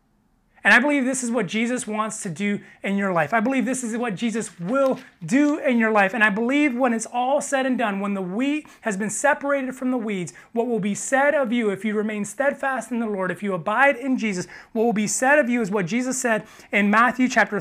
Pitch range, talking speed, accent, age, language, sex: 185-240 Hz, 250 wpm, American, 30-49, English, male